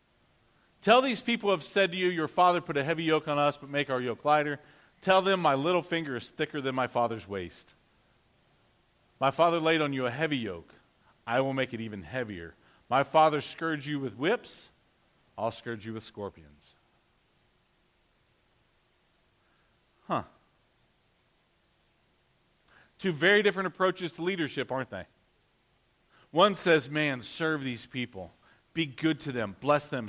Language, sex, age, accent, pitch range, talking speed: English, male, 40-59, American, 115-155 Hz, 155 wpm